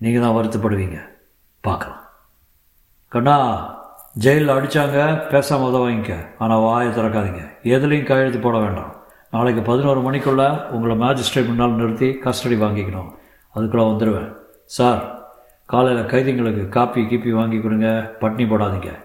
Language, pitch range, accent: Tamil, 100-120 Hz, native